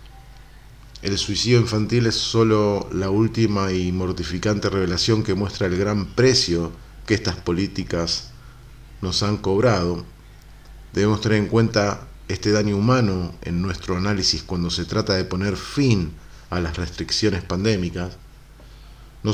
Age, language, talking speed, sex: 40-59, Spanish, 130 wpm, male